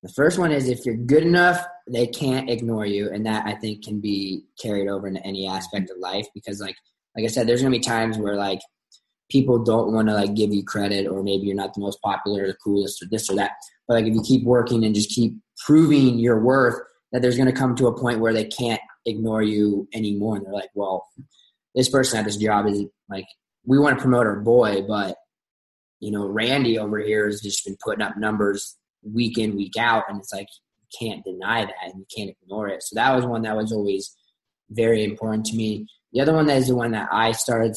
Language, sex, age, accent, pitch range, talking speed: English, male, 20-39, American, 105-130 Hz, 240 wpm